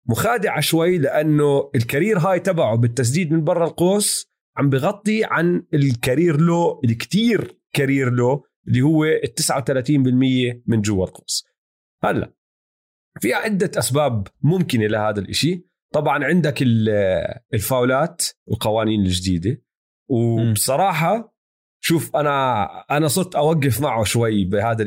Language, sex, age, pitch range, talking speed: Arabic, male, 30-49, 125-170 Hz, 110 wpm